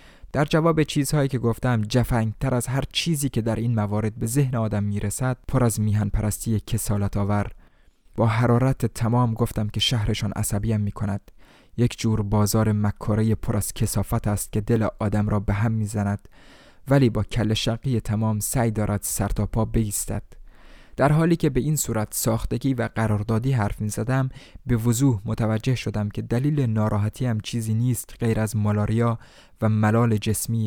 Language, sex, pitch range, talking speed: Persian, male, 105-120 Hz, 160 wpm